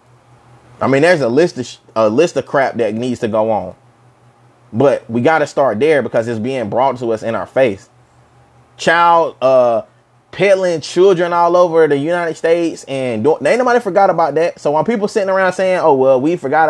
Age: 20-39